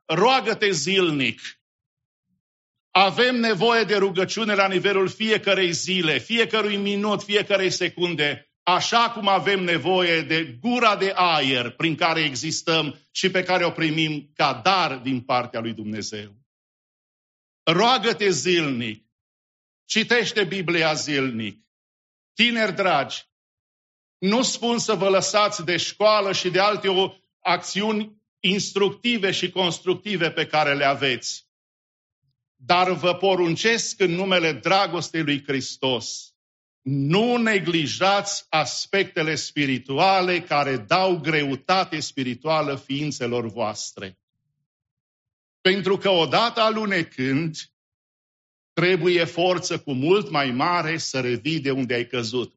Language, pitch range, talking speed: English, 135-195 Hz, 110 wpm